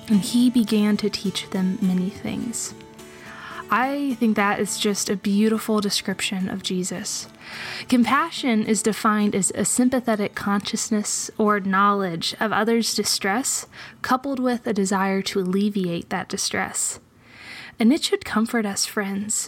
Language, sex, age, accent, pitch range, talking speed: English, female, 20-39, American, 200-230 Hz, 135 wpm